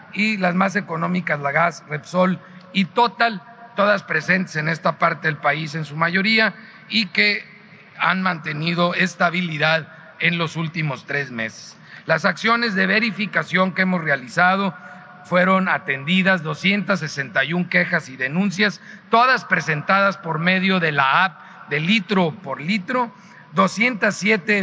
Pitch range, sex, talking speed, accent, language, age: 160-200 Hz, male, 130 wpm, Mexican, Spanish, 40-59